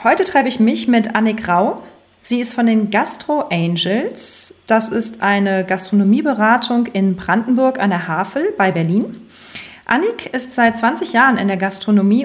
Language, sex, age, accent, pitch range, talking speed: German, female, 30-49, German, 205-255 Hz, 155 wpm